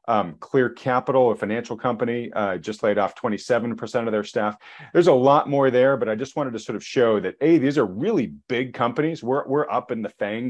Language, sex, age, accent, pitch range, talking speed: English, male, 40-59, American, 105-140 Hz, 230 wpm